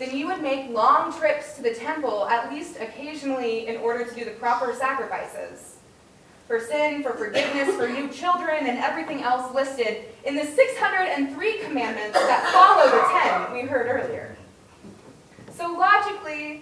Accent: American